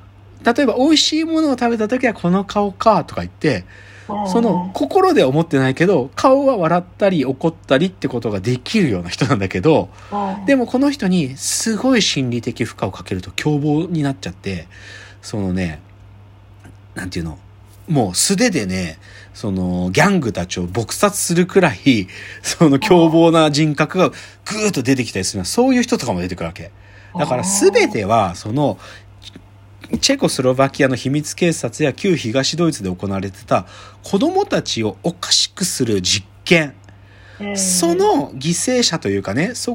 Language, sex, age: Japanese, male, 40-59